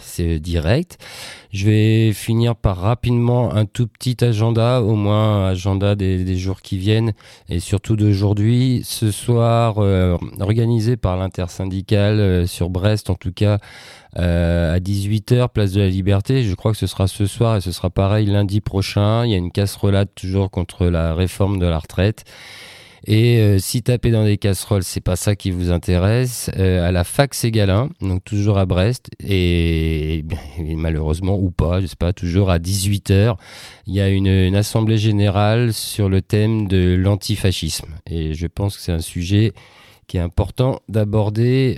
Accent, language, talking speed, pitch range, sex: French, French, 175 wpm, 90-110 Hz, male